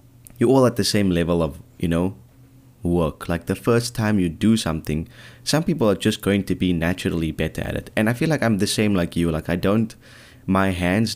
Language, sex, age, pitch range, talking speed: English, male, 20-39, 90-120 Hz, 225 wpm